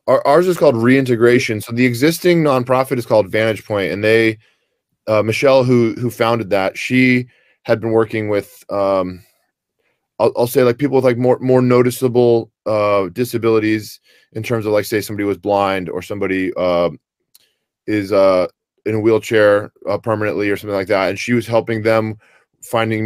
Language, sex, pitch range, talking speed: English, male, 100-125 Hz, 170 wpm